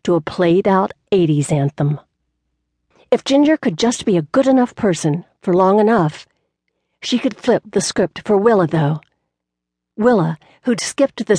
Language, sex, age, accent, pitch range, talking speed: English, female, 50-69, American, 155-220 Hz, 155 wpm